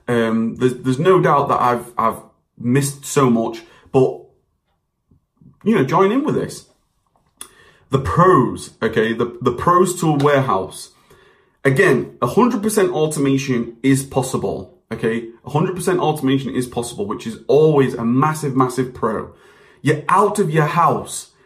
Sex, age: male, 30-49